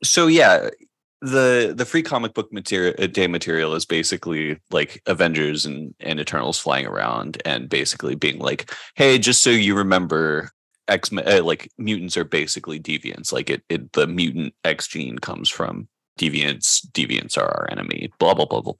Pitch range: 80-120 Hz